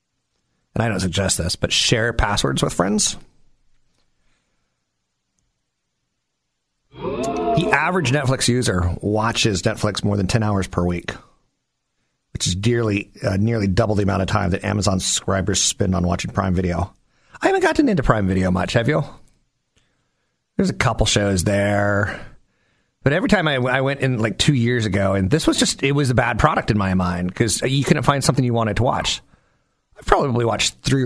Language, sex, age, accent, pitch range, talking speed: English, male, 40-59, American, 100-130 Hz, 170 wpm